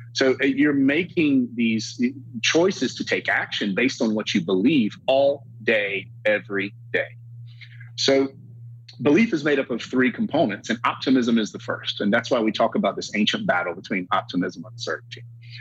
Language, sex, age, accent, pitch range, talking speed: English, male, 30-49, American, 115-140 Hz, 165 wpm